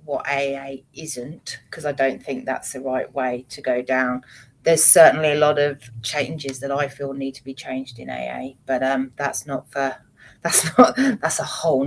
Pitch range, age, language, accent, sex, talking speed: 135-170 Hz, 30-49, English, British, female, 195 wpm